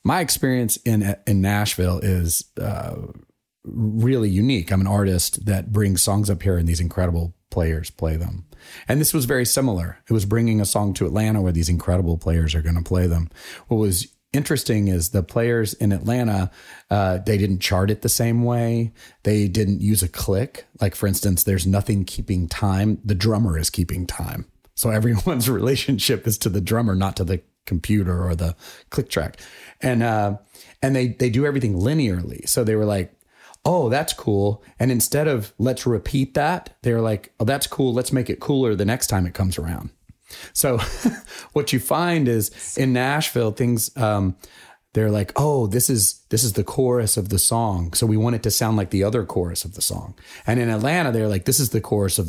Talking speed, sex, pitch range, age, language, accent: 200 wpm, male, 95-120 Hz, 30-49, English, American